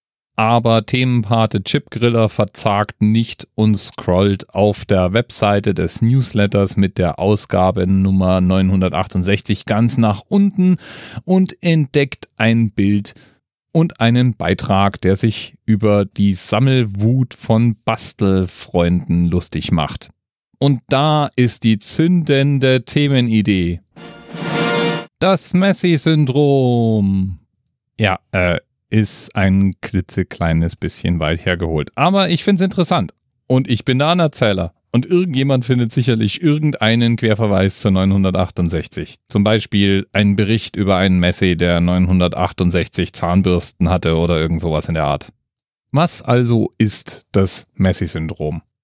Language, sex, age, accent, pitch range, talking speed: German, male, 40-59, German, 95-125 Hz, 110 wpm